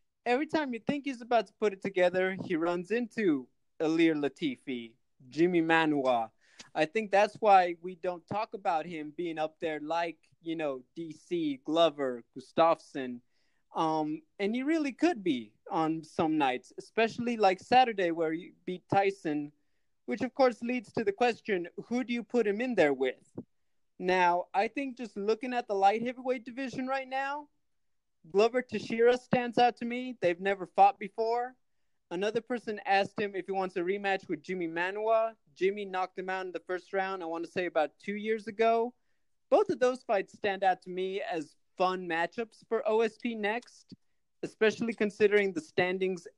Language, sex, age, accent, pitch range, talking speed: English, male, 20-39, American, 170-230 Hz, 170 wpm